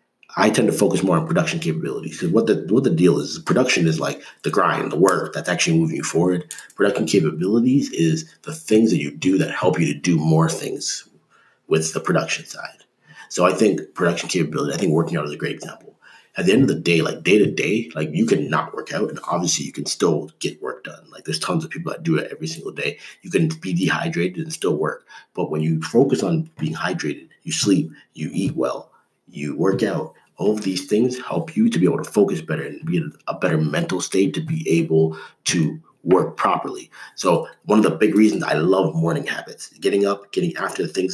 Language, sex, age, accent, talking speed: English, male, 30-49, American, 230 wpm